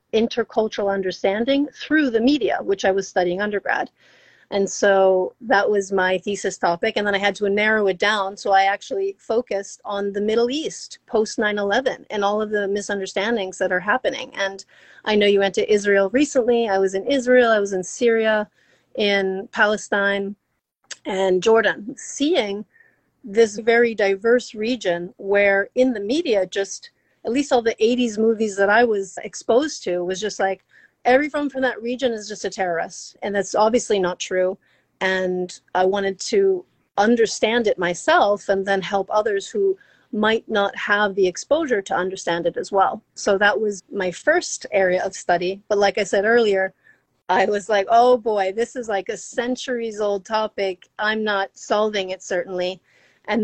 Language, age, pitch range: English, 40-59, 195-235 Hz